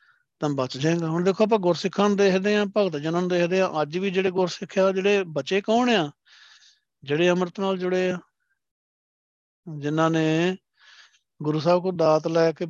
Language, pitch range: Punjabi, 150-185 Hz